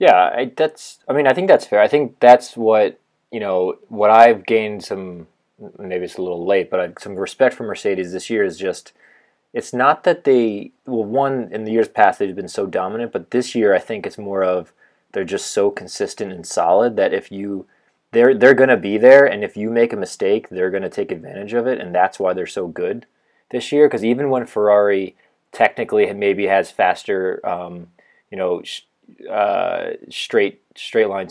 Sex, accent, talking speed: male, American, 205 wpm